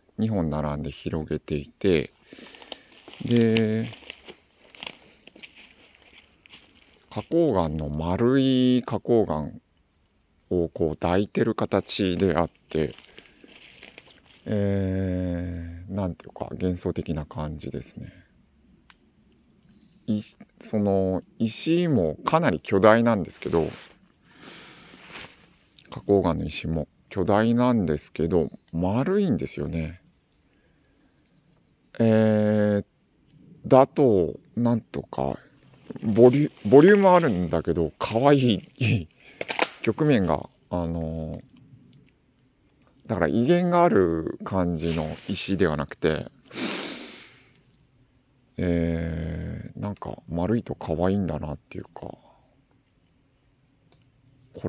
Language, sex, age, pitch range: Japanese, male, 50-69, 80-120 Hz